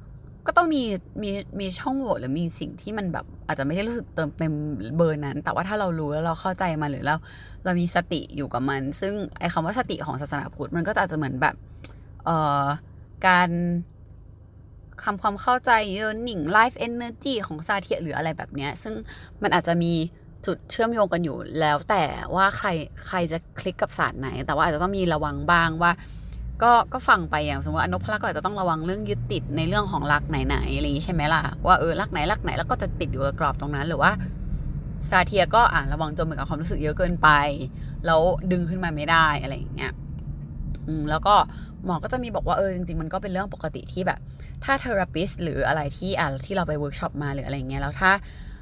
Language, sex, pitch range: Thai, female, 145-190 Hz